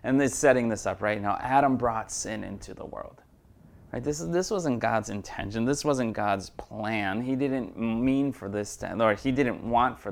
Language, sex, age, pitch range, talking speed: English, male, 30-49, 105-135 Hz, 200 wpm